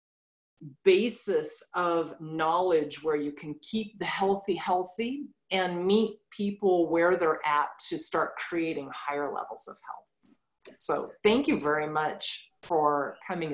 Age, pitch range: 30-49, 160-230 Hz